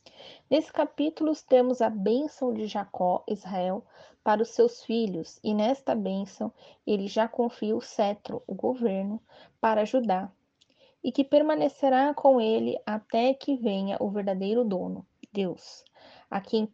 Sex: female